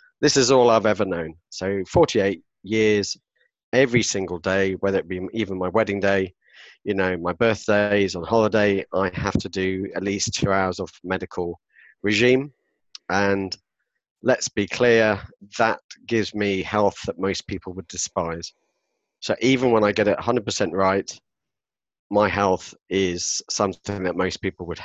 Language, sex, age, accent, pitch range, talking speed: English, male, 40-59, British, 95-110 Hz, 160 wpm